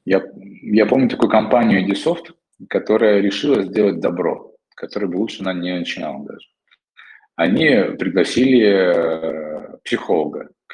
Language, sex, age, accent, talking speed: Russian, male, 20-39, native, 115 wpm